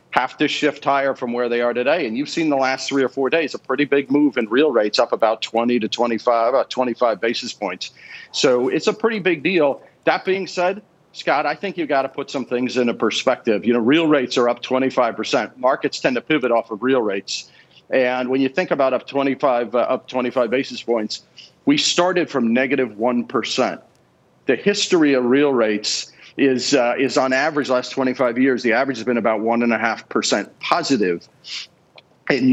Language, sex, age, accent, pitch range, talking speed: English, male, 50-69, American, 120-145 Hz, 210 wpm